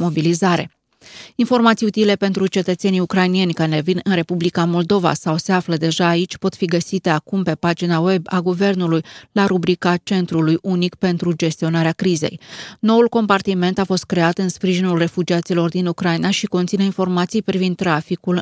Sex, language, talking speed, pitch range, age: female, Romanian, 155 wpm, 165-185 Hz, 20-39